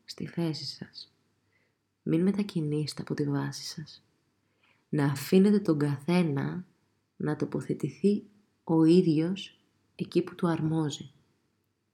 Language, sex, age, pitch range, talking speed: Greek, female, 20-39, 140-170 Hz, 105 wpm